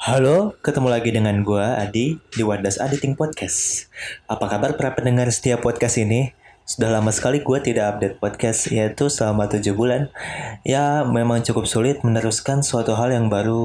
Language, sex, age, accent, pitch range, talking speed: Indonesian, male, 20-39, native, 105-125 Hz, 165 wpm